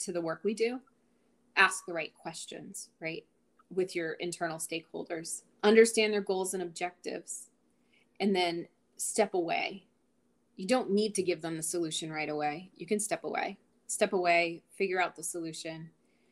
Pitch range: 165-205 Hz